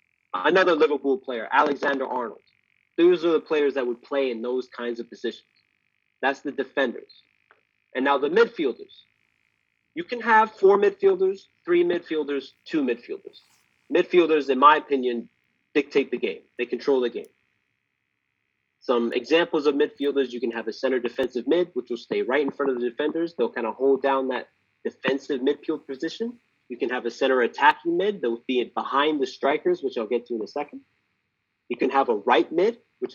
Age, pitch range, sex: 30-49, 130-205 Hz, male